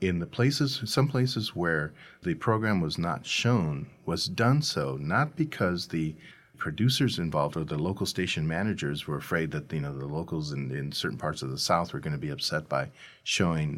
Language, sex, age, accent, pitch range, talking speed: English, male, 40-59, American, 85-135 Hz, 195 wpm